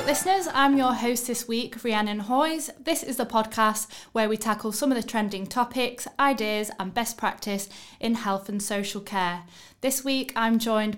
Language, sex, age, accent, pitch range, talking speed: English, female, 10-29, British, 200-250 Hz, 180 wpm